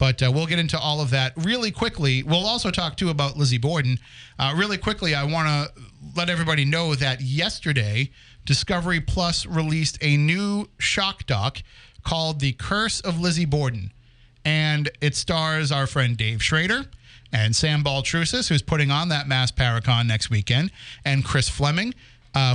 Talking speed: 170 wpm